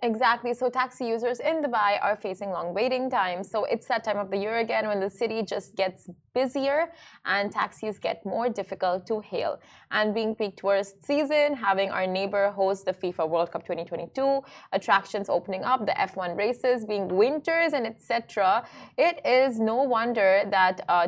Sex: female